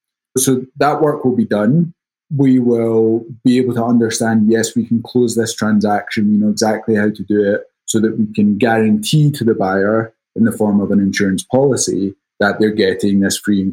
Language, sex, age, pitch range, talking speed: English, male, 20-39, 105-120 Hz, 200 wpm